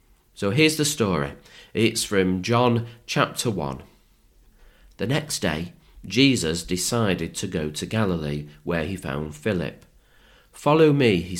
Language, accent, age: English, British, 40-59